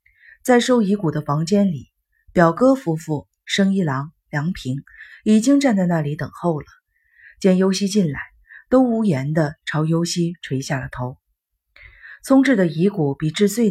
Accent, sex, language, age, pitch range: native, female, Chinese, 30-49, 150-215 Hz